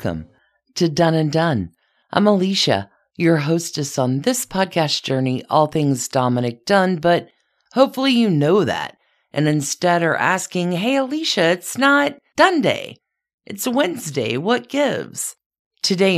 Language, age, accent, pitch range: English, 50-69, American, 145-200 Hz